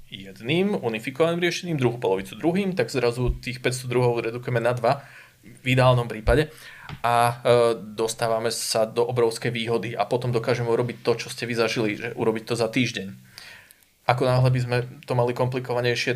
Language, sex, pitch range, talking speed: Slovak, male, 110-130 Hz, 165 wpm